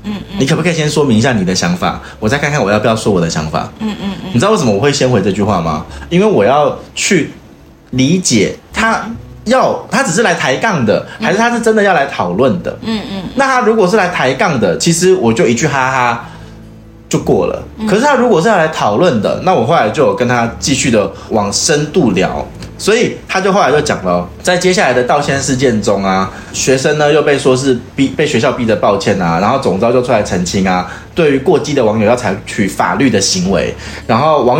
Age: 20-39